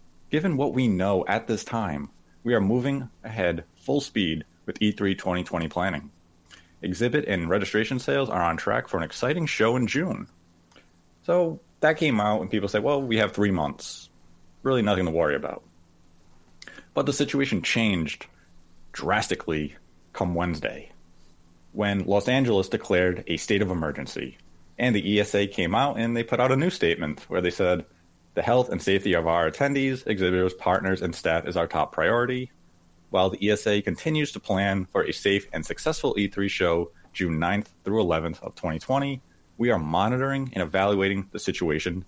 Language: English